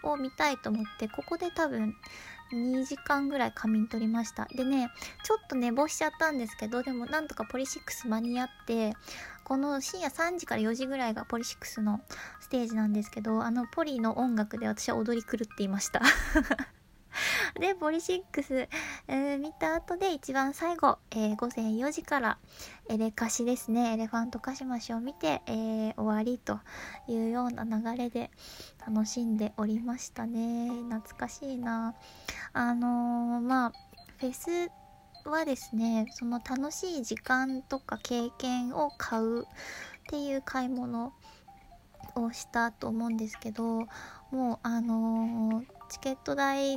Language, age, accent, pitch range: Japanese, 20-39, native, 230-280 Hz